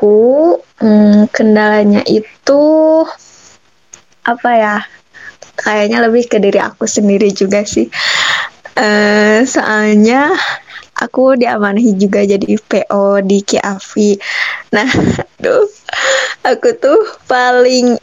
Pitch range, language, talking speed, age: 210-255 Hz, Indonesian, 90 wpm, 20-39